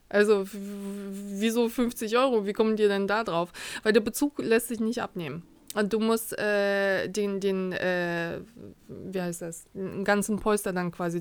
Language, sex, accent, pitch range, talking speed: German, female, German, 185-245 Hz, 170 wpm